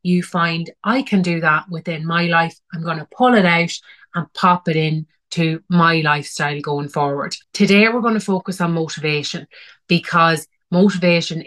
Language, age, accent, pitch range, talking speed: English, 30-49, Irish, 160-195 Hz, 175 wpm